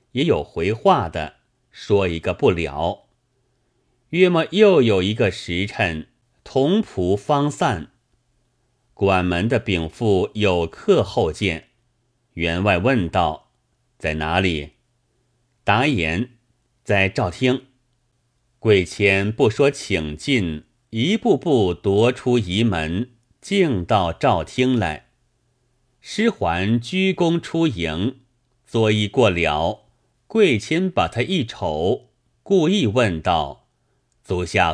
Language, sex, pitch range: Chinese, male, 100-130 Hz